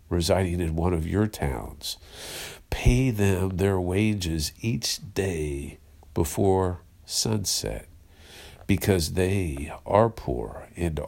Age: 50-69